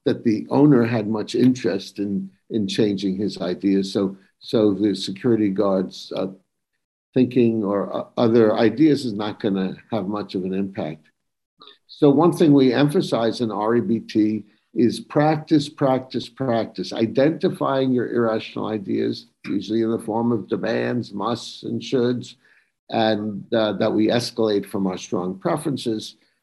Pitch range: 105-125 Hz